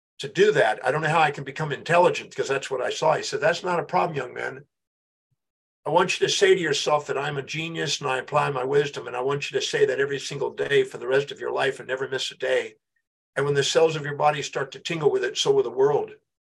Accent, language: American, English